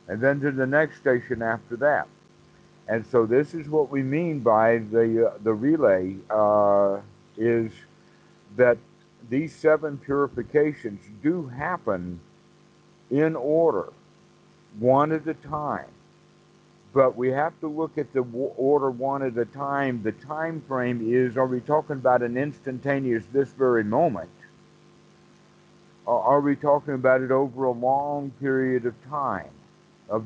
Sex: male